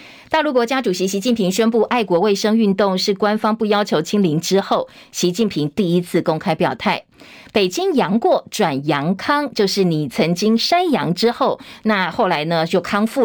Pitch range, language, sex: 175-230 Hz, Chinese, female